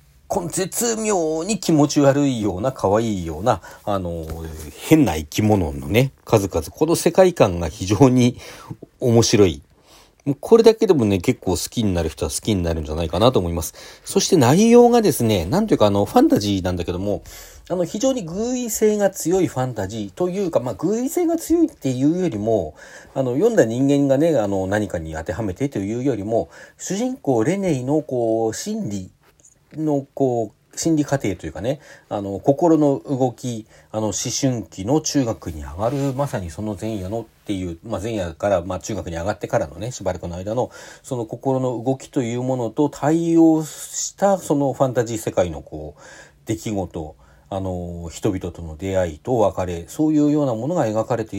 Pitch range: 95-150 Hz